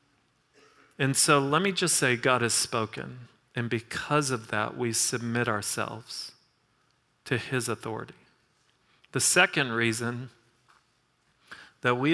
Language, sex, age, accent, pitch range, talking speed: English, male, 40-59, American, 120-150 Hz, 120 wpm